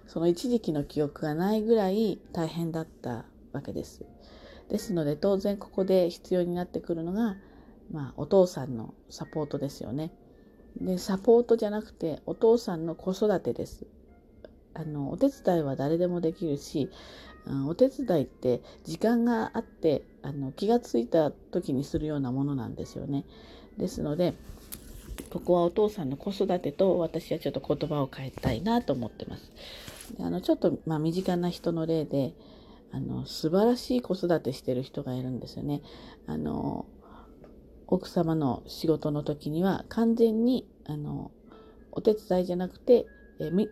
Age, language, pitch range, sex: 40-59, Japanese, 145-210 Hz, female